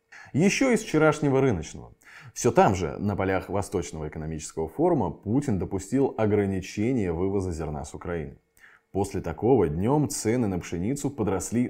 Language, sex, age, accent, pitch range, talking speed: Russian, male, 20-39, native, 95-140 Hz, 135 wpm